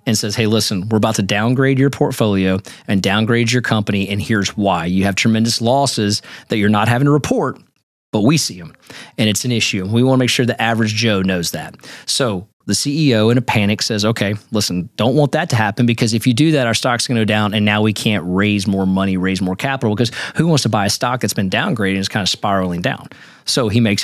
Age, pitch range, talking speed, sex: 30-49, 100-120 Hz, 245 wpm, male